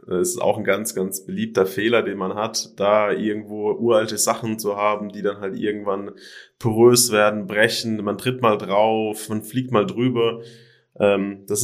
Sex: male